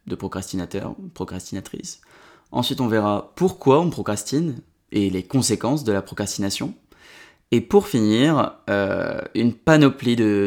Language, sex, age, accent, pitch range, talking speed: French, male, 20-39, French, 105-140 Hz, 125 wpm